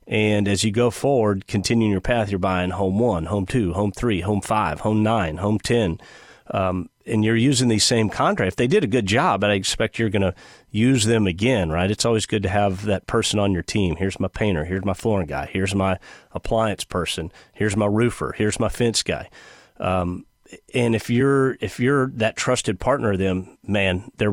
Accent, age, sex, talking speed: American, 40-59, male, 210 wpm